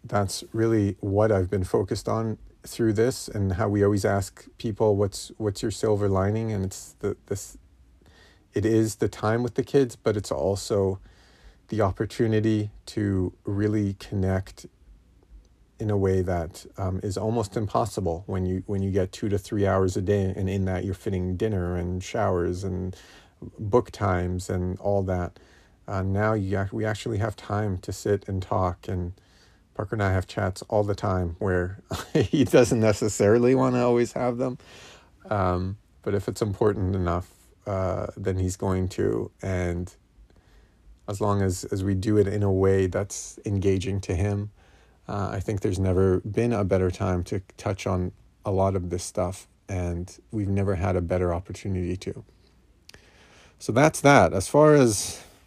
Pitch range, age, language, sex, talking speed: 90-105 Hz, 40-59, English, male, 170 wpm